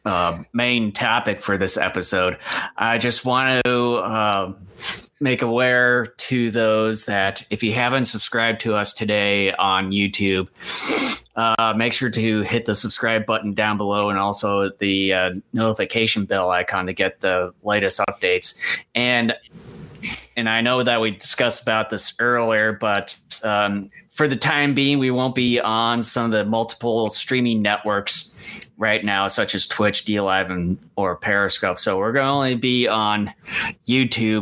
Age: 30-49